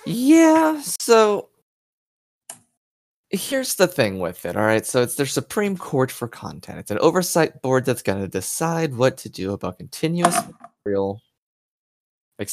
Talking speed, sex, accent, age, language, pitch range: 145 wpm, male, American, 20-39, English, 105-150 Hz